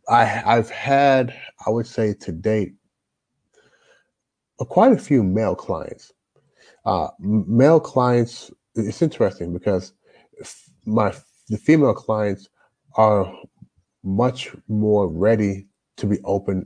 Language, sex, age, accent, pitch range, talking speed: English, male, 30-49, American, 95-115 Hz, 110 wpm